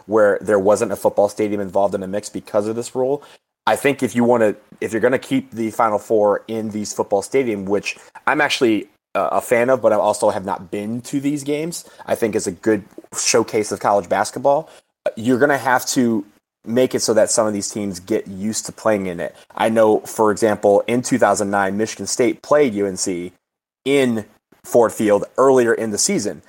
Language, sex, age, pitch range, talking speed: English, male, 30-49, 100-120 Hz, 210 wpm